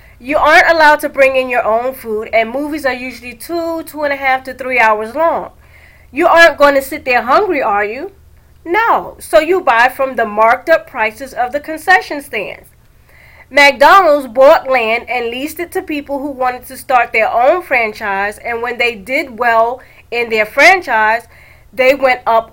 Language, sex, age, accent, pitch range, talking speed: English, female, 30-49, American, 230-305 Hz, 185 wpm